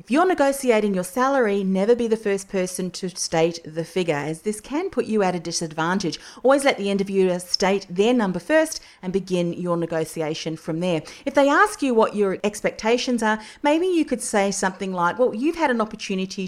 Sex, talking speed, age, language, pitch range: female, 200 wpm, 40-59, English, 170-220 Hz